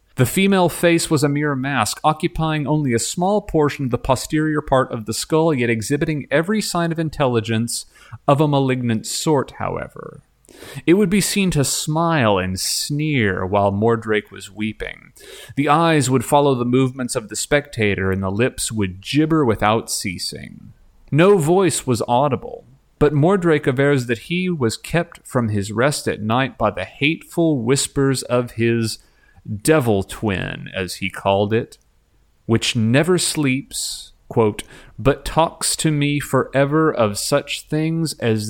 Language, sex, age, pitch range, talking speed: English, male, 30-49, 110-150 Hz, 155 wpm